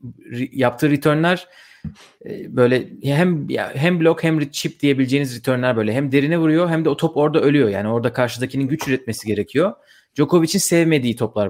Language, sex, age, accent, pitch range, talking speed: Turkish, male, 30-49, native, 120-145 Hz, 150 wpm